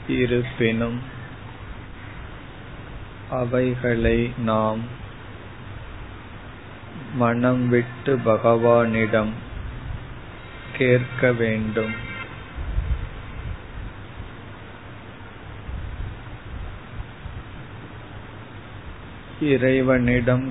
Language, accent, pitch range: Tamil, native, 110-120 Hz